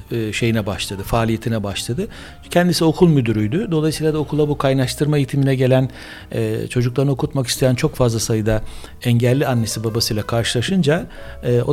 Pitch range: 120-155 Hz